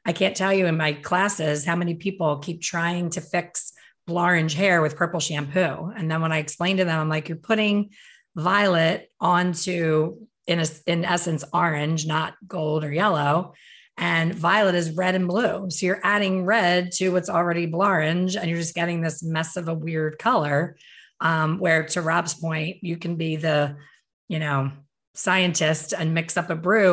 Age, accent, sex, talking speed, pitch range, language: 30-49, American, female, 185 wpm, 155-180 Hz, English